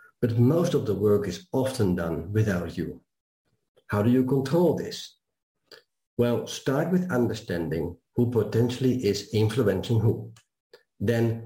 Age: 50-69